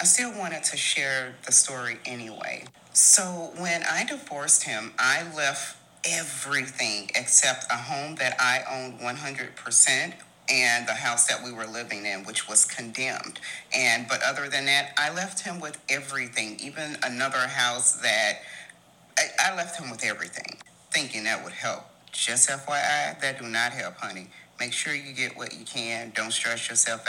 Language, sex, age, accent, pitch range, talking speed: English, female, 40-59, American, 120-145 Hz, 165 wpm